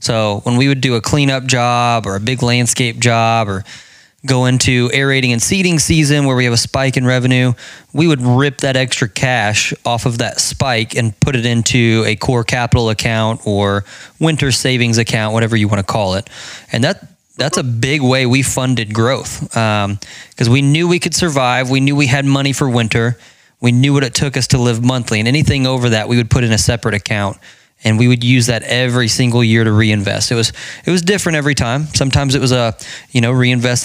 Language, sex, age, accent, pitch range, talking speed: English, male, 20-39, American, 115-135 Hz, 215 wpm